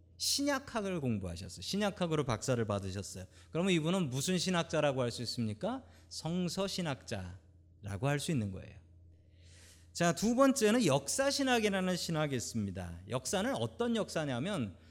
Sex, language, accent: male, Korean, native